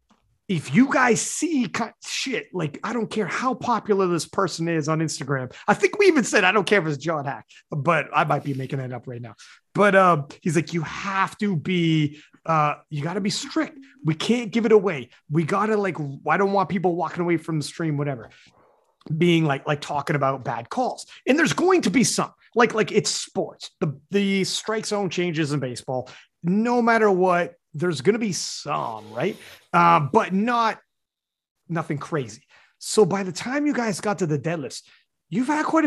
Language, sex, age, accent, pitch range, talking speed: English, male, 30-49, American, 150-215 Hz, 200 wpm